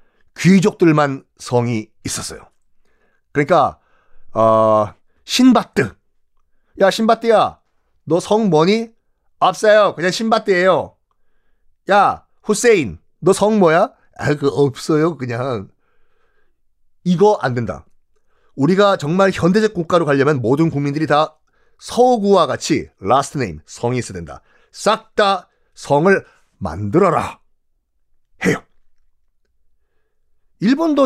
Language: Korean